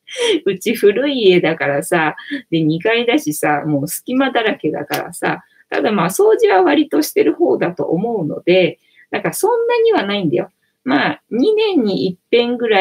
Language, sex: Japanese, female